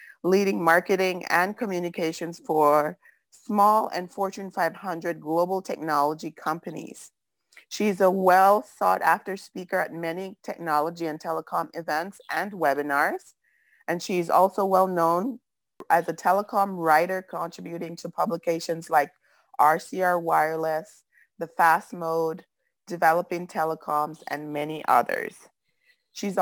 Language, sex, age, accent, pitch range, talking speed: English, female, 30-49, American, 170-205 Hz, 115 wpm